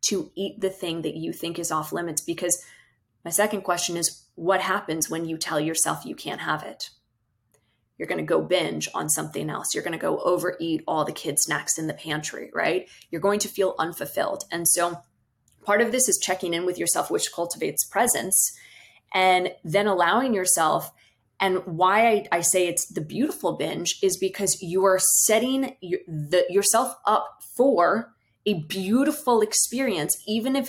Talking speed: 175 wpm